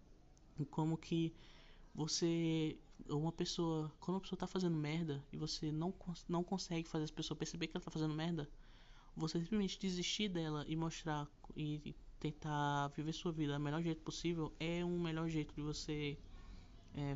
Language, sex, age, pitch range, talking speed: Portuguese, male, 20-39, 150-185 Hz, 170 wpm